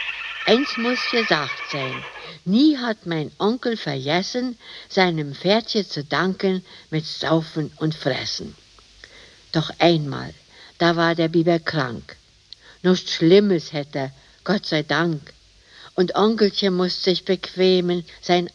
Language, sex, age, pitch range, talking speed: German, female, 60-79, 150-195 Hz, 115 wpm